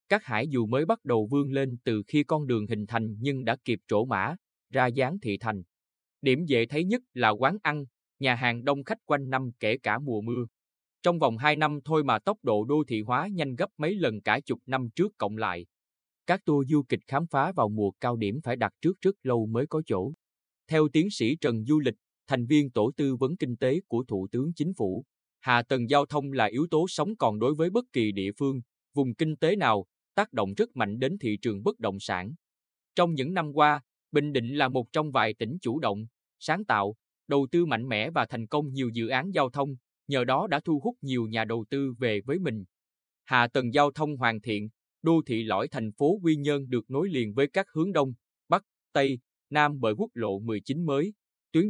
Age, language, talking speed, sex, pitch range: 20-39, Vietnamese, 225 wpm, male, 110-150 Hz